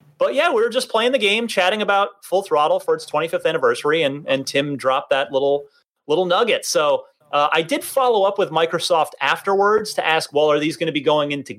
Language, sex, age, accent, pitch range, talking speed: English, male, 30-49, American, 145-220 Hz, 225 wpm